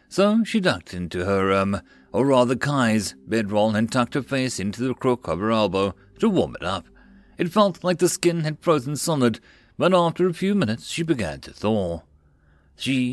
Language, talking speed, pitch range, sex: English, 190 wpm, 105-145 Hz, male